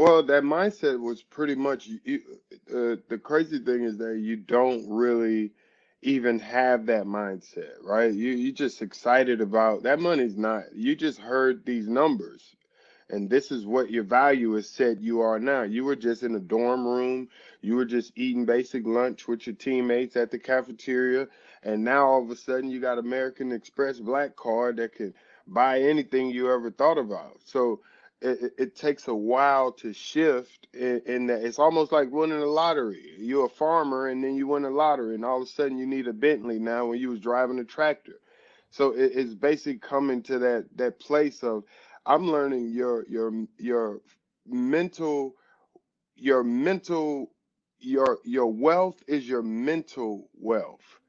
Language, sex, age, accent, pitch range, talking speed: English, male, 20-39, American, 120-145 Hz, 175 wpm